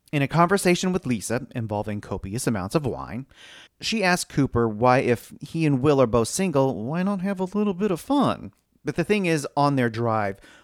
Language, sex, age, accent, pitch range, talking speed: English, male, 30-49, American, 110-160 Hz, 205 wpm